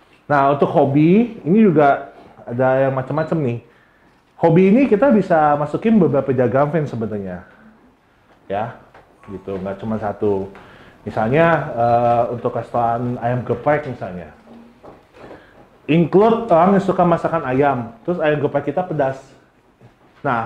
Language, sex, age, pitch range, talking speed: Indonesian, male, 30-49, 130-195 Hz, 125 wpm